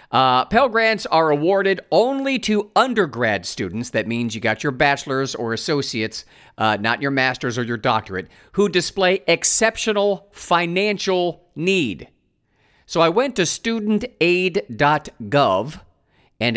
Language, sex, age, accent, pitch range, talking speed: English, male, 50-69, American, 130-200 Hz, 125 wpm